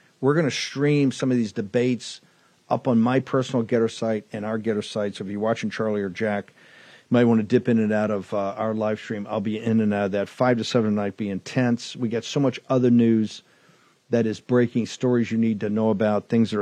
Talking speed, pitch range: 245 wpm, 110-135 Hz